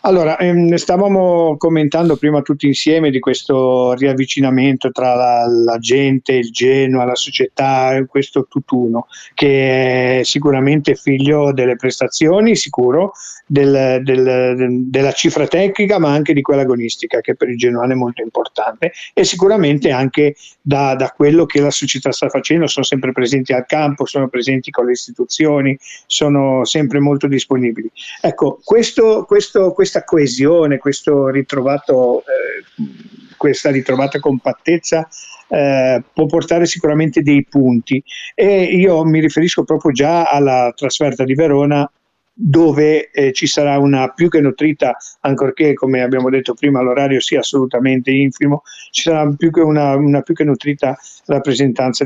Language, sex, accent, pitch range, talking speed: Italian, male, native, 130-155 Hz, 135 wpm